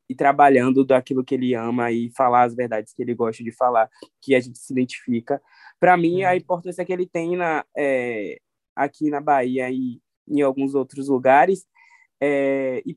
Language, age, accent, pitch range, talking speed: Portuguese, 20-39, Brazilian, 145-185 Hz, 180 wpm